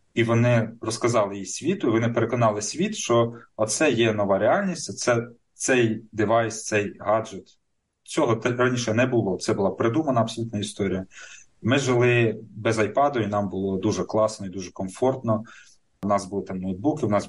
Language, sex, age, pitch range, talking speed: Ukrainian, male, 30-49, 100-120 Hz, 165 wpm